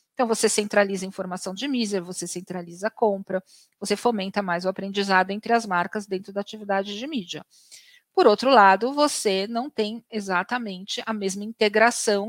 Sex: female